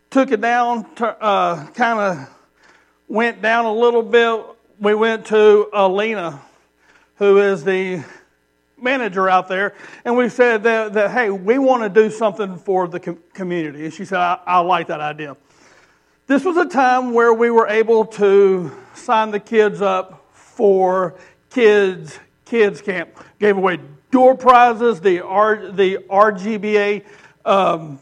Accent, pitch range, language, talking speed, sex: American, 175-225 Hz, English, 150 wpm, male